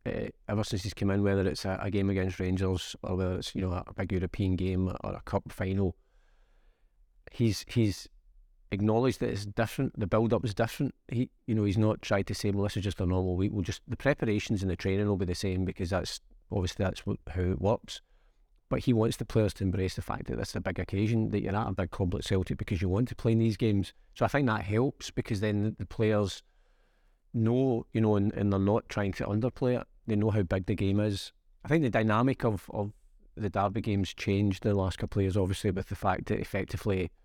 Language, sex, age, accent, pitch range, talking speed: English, male, 40-59, British, 95-110 Hz, 240 wpm